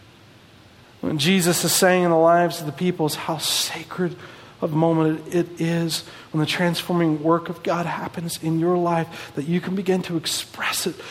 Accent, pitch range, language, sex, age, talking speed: American, 145-210 Hz, English, male, 40-59, 185 wpm